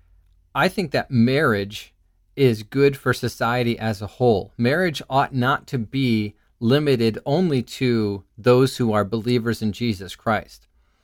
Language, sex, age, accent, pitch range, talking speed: English, male, 30-49, American, 105-130 Hz, 140 wpm